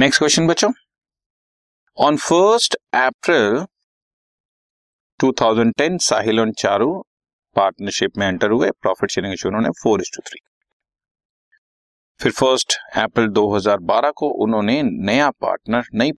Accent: native